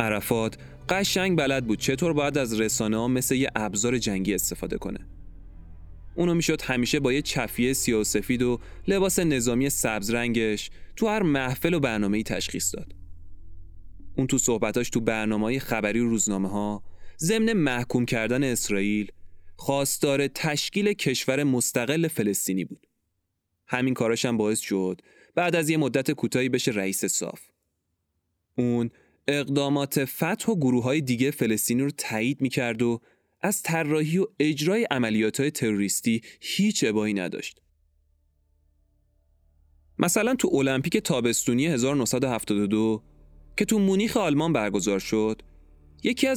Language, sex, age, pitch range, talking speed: Persian, male, 20-39, 100-145 Hz, 130 wpm